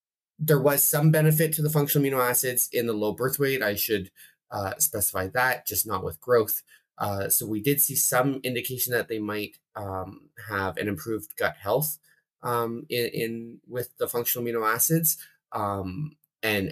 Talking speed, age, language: 175 wpm, 20-39, English